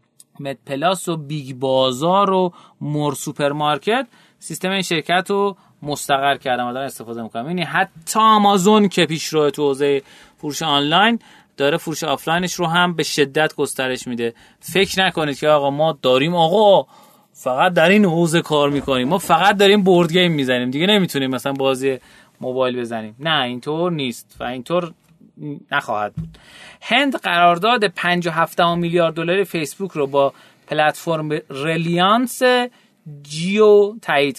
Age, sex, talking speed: 30-49, male, 140 wpm